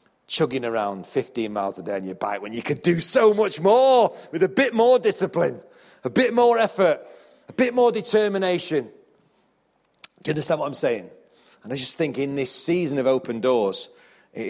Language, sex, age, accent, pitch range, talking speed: English, male, 40-59, British, 125-185 Hz, 190 wpm